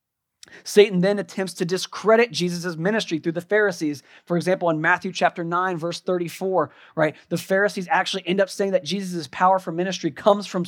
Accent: American